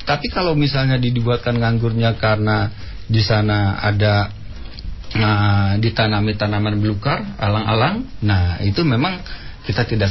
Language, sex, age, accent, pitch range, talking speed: Indonesian, male, 50-69, native, 100-120 Hz, 115 wpm